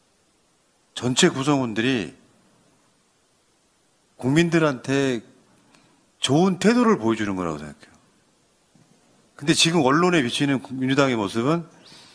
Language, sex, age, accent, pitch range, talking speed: English, male, 40-59, Korean, 125-175 Hz, 70 wpm